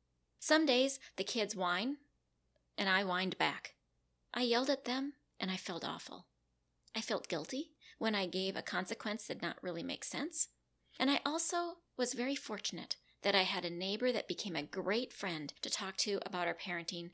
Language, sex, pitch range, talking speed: English, female, 170-235 Hz, 185 wpm